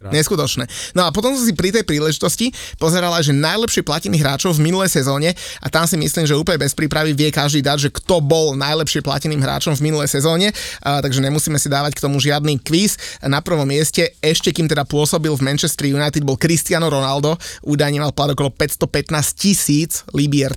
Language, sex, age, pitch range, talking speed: Slovak, male, 30-49, 145-175 Hz, 190 wpm